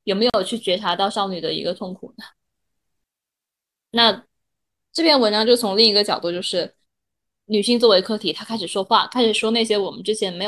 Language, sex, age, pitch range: Chinese, female, 10-29, 200-235 Hz